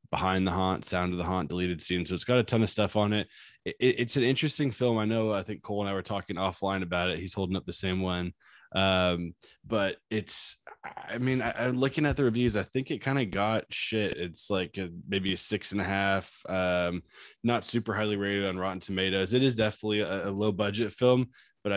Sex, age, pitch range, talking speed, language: male, 20-39, 90-105 Hz, 235 wpm, English